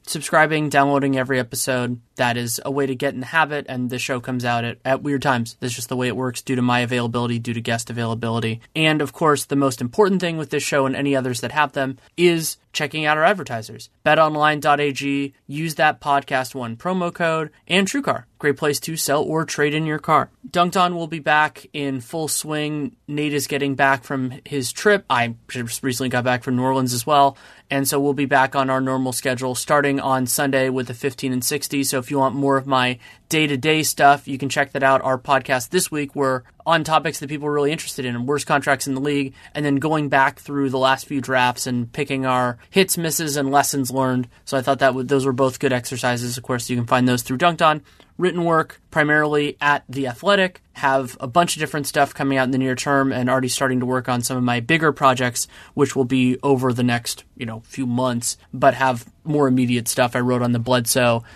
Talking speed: 230 wpm